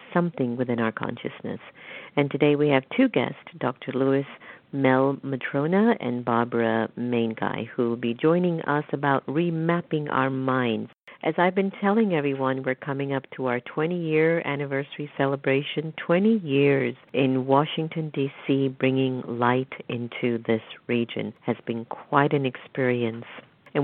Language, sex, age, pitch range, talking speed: English, female, 50-69, 120-155 Hz, 150 wpm